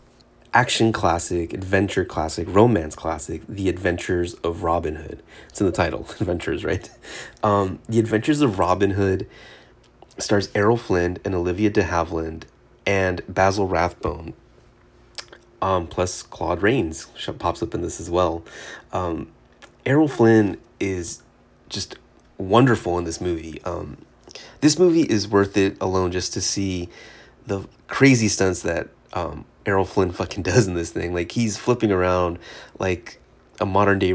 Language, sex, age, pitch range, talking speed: English, male, 30-49, 90-110 Hz, 145 wpm